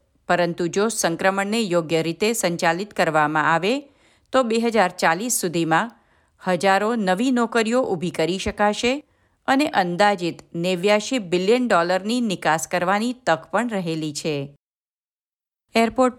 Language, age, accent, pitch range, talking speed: Gujarati, 50-69, native, 165-215 Hz, 100 wpm